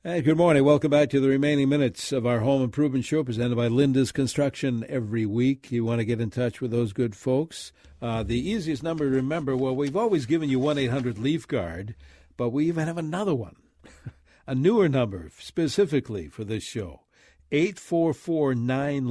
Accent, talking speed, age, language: American, 185 wpm, 60-79, English